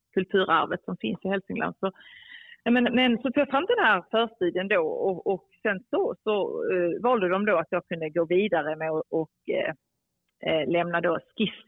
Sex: female